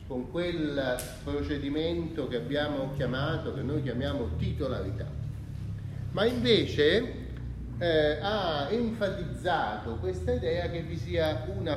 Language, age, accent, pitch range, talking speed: Italian, 30-49, native, 115-160 Hz, 105 wpm